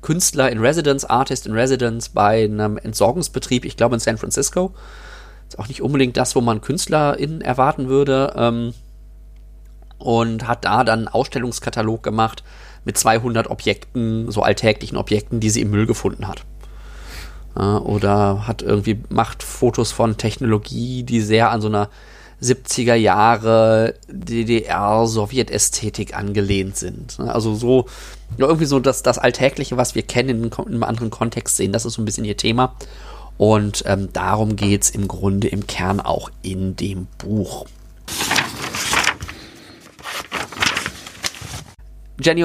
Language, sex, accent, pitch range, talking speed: German, male, German, 105-130 Hz, 135 wpm